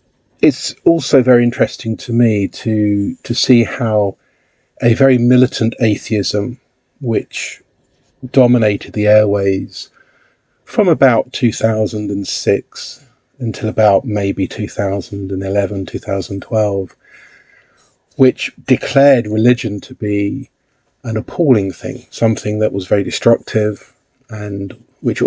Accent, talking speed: British, 95 wpm